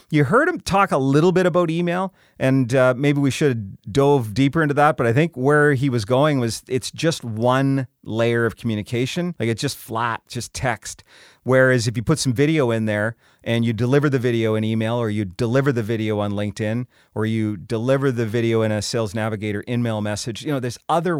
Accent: American